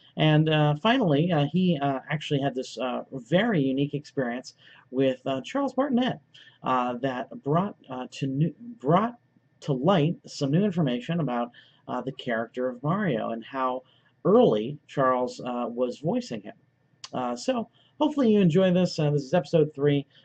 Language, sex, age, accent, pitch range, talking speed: English, male, 40-59, American, 135-185 Hz, 165 wpm